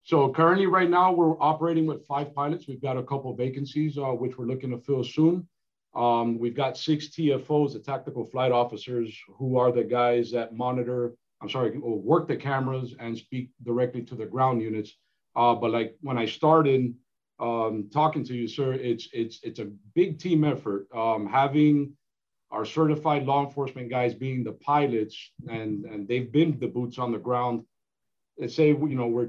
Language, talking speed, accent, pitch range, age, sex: English, 185 wpm, American, 115-140 Hz, 50-69, male